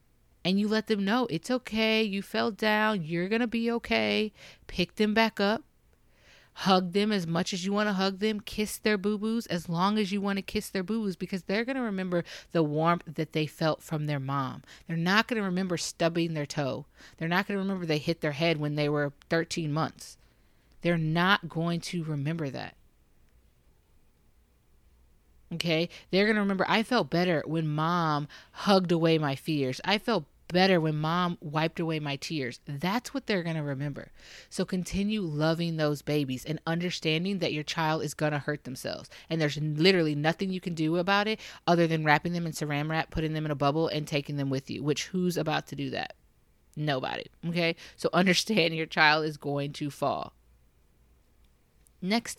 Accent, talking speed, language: American, 195 wpm, English